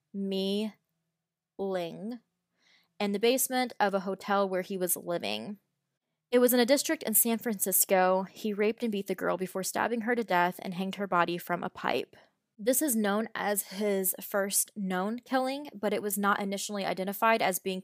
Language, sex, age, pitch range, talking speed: English, female, 20-39, 185-220 Hz, 180 wpm